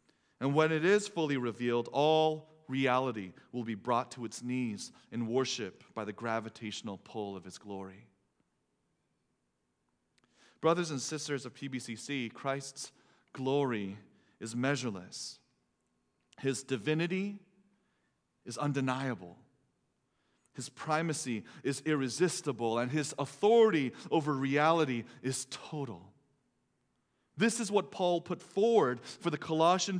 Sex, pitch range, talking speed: male, 120-180 Hz, 110 wpm